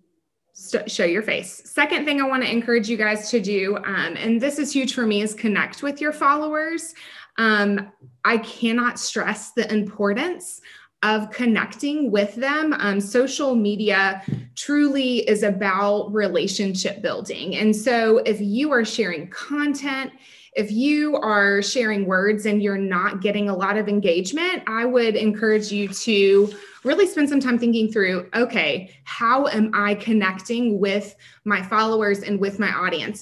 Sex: female